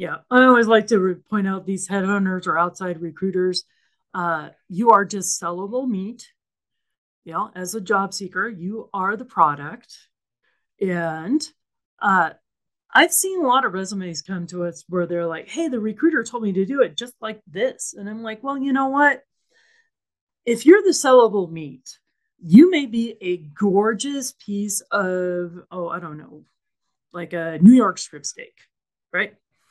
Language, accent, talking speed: English, American, 165 wpm